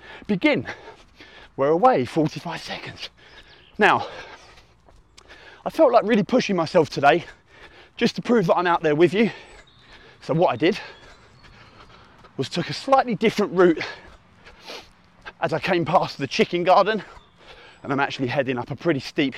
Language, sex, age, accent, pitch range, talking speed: English, male, 30-49, British, 150-205 Hz, 145 wpm